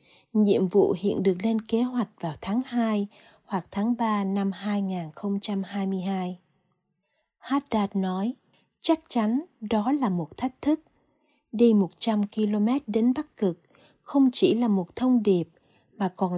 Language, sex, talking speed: Vietnamese, female, 140 wpm